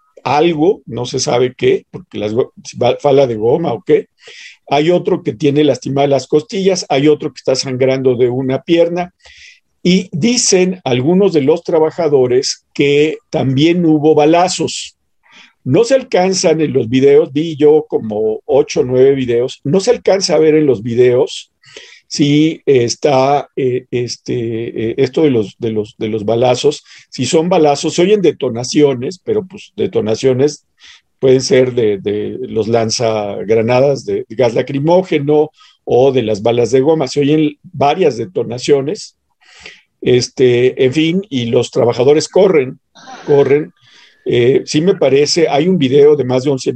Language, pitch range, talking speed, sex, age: Spanish, 130-180 Hz, 155 wpm, male, 50-69